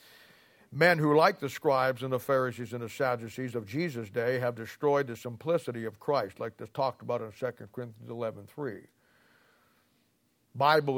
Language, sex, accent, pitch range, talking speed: English, male, American, 120-150 Hz, 160 wpm